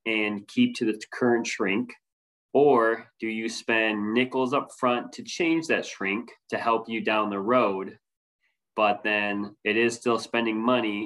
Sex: male